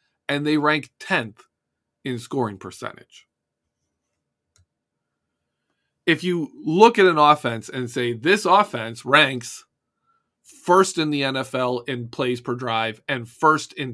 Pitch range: 120-175 Hz